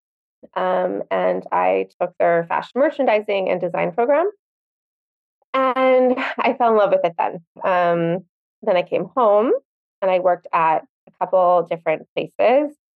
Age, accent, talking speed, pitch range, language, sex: 20-39, American, 145 wpm, 170-205 Hz, English, female